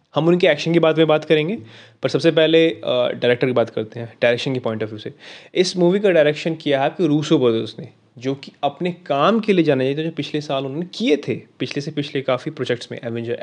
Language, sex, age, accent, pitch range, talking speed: Hindi, male, 20-39, native, 130-165 Hz, 240 wpm